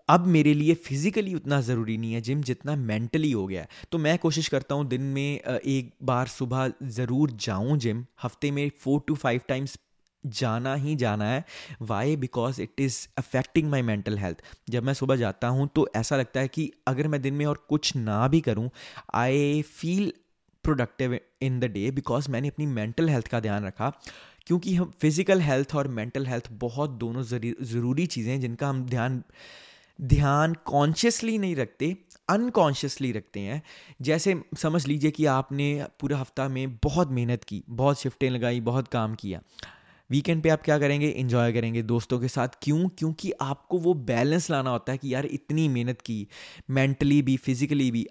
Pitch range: 120-150 Hz